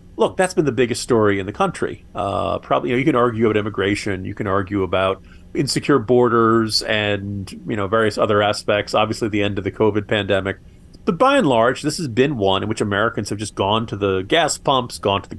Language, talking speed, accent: English, 225 wpm, American